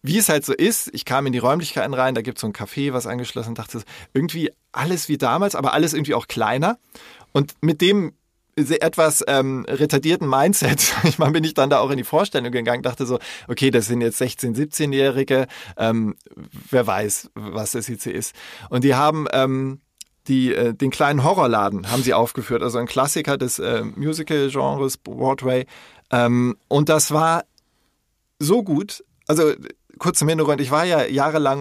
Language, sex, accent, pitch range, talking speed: German, male, German, 125-155 Hz, 185 wpm